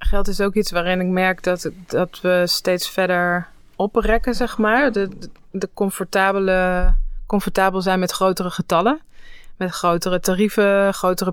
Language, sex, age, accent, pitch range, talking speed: Dutch, female, 20-39, Dutch, 175-195 Hz, 145 wpm